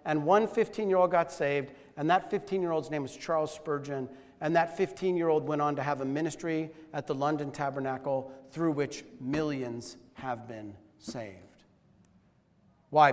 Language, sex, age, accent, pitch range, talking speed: English, male, 40-59, American, 120-160 Hz, 145 wpm